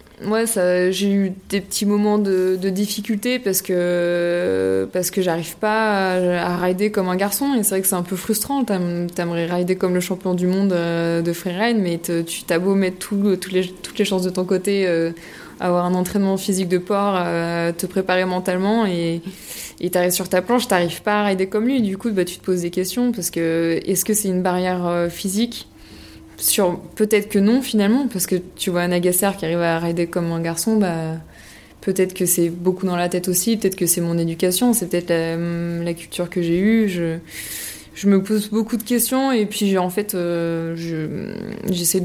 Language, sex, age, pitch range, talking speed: French, female, 20-39, 170-195 Hz, 210 wpm